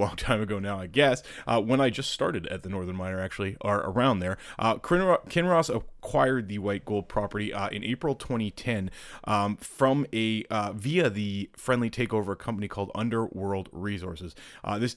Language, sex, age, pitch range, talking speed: English, male, 30-49, 100-120 Hz, 180 wpm